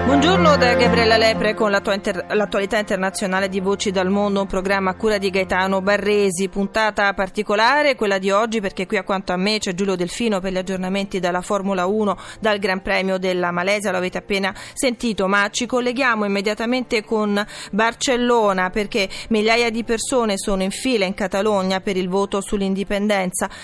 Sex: female